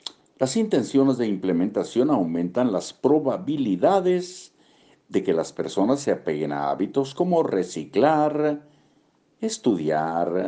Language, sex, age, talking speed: Spanish, male, 60-79, 105 wpm